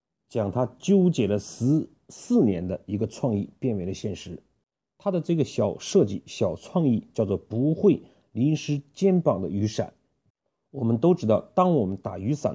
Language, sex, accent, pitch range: Chinese, male, native, 105-150 Hz